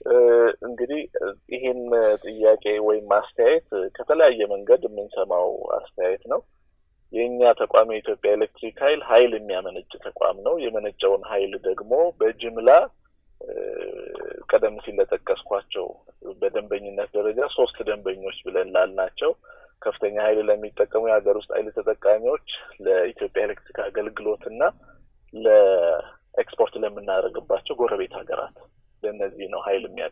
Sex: male